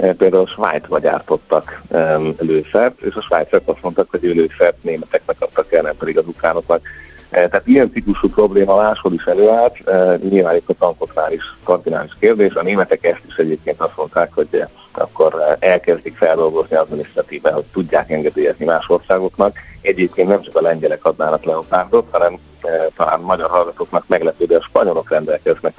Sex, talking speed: male, 170 wpm